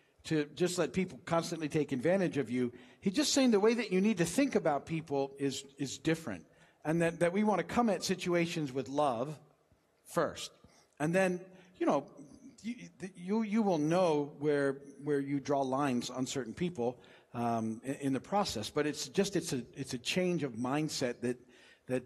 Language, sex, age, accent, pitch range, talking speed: English, male, 50-69, American, 135-160 Hz, 190 wpm